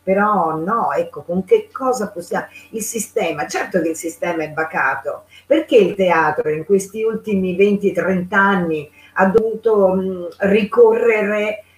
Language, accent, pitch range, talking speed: Italian, native, 190-250 Hz, 140 wpm